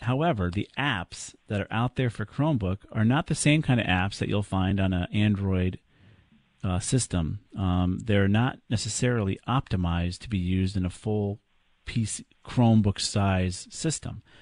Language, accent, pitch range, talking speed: English, American, 90-110 Hz, 160 wpm